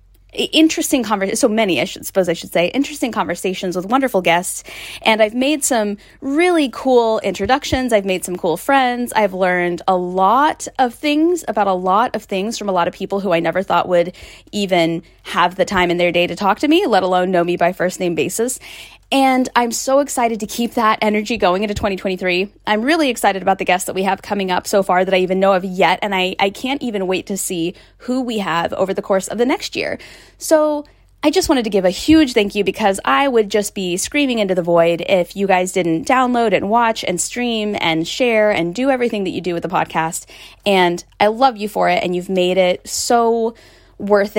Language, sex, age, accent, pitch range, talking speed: English, female, 10-29, American, 185-245 Hz, 225 wpm